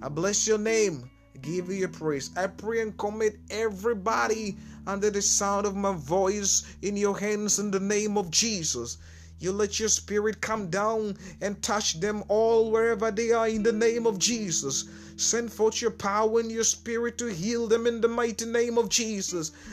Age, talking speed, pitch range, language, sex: 30-49, 190 wpm, 200-240 Hz, Finnish, male